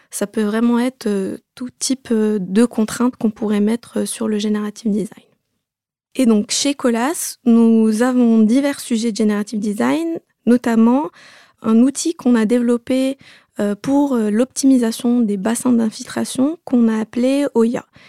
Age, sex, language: 20-39, female, French